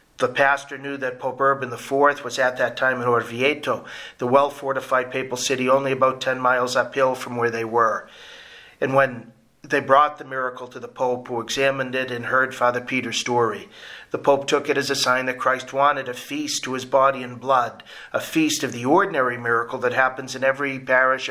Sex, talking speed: male, 200 wpm